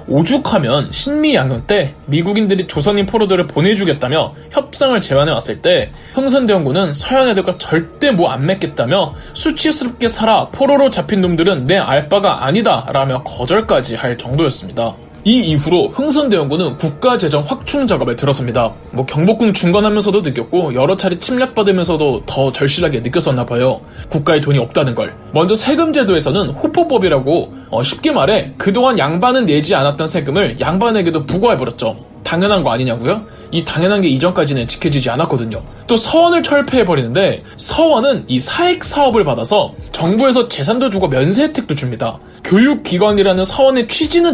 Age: 20-39